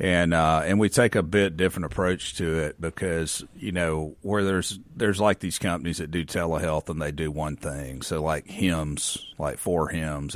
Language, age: English, 40-59